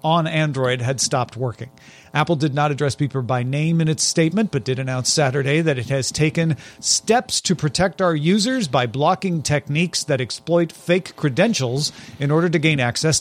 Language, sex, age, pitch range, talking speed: English, male, 40-59, 130-170 Hz, 180 wpm